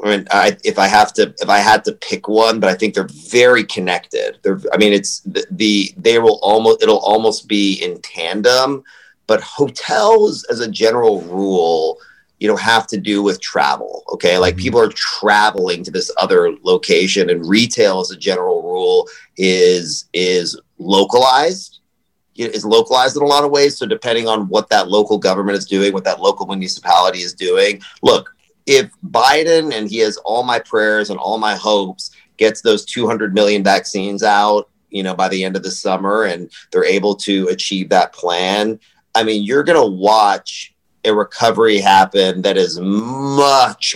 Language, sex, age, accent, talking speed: English, male, 40-59, American, 180 wpm